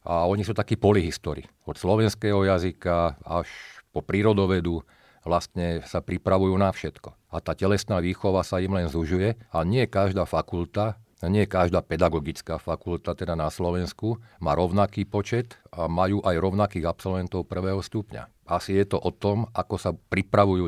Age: 40-59